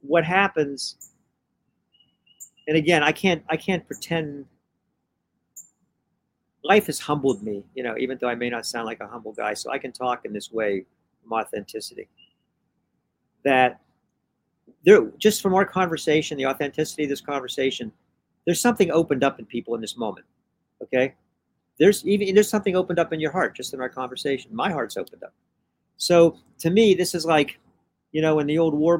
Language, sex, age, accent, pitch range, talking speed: English, male, 50-69, American, 135-170 Hz, 175 wpm